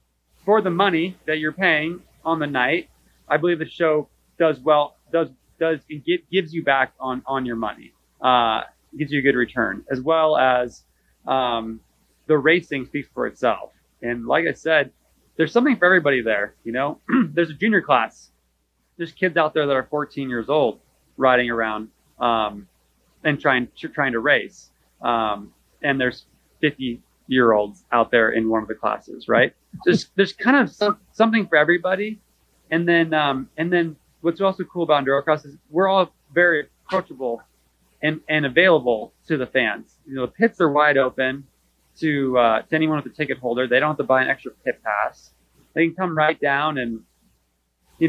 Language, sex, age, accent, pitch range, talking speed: English, male, 30-49, American, 120-165 Hz, 185 wpm